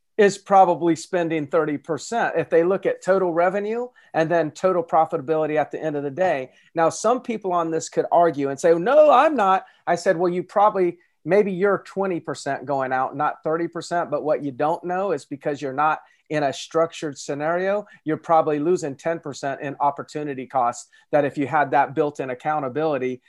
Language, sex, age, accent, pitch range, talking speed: English, male, 40-59, American, 140-175 Hz, 185 wpm